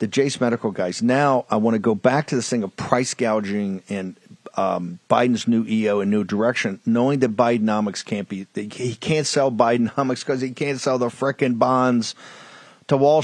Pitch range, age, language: 125-160 Hz, 50-69, English